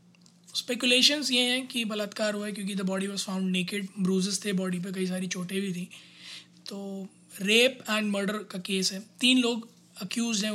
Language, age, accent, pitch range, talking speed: Hindi, 20-39, native, 190-235 Hz, 190 wpm